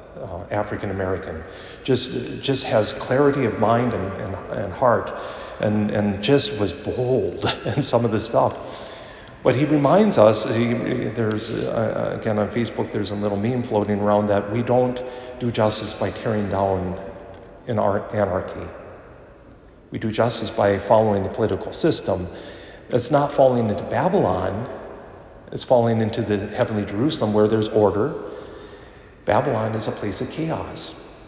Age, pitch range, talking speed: 50-69, 100-130 Hz, 150 wpm